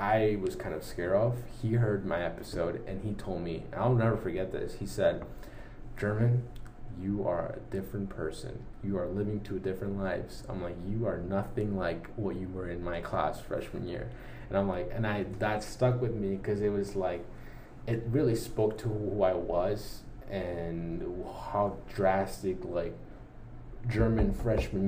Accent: American